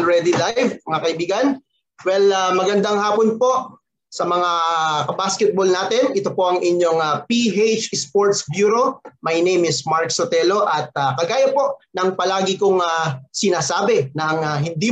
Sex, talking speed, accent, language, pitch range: male, 155 wpm, native, Filipino, 155-210 Hz